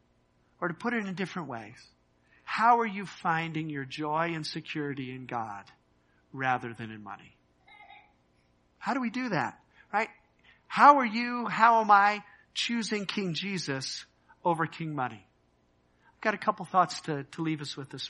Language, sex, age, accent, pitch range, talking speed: English, male, 50-69, American, 135-185 Hz, 170 wpm